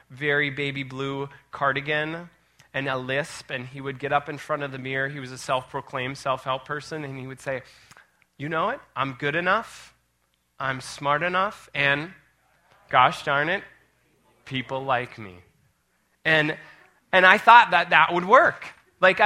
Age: 20-39